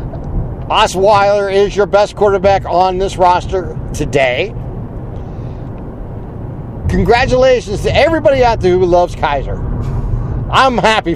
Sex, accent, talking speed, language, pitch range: male, American, 100 wpm, English, 145-215 Hz